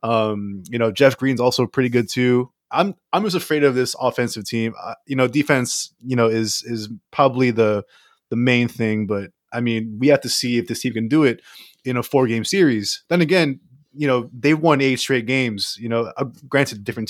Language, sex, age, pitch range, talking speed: English, male, 20-39, 115-130 Hz, 215 wpm